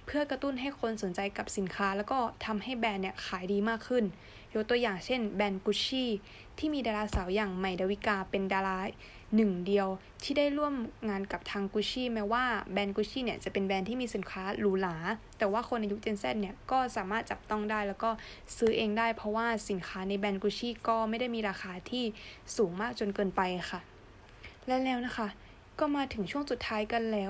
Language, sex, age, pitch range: Thai, female, 20-39, 200-235 Hz